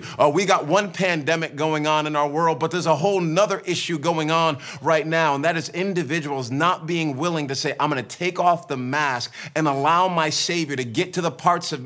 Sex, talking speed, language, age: male, 230 wpm, English, 30-49